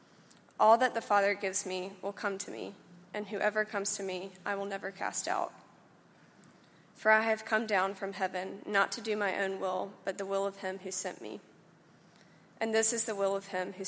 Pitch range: 195-215 Hz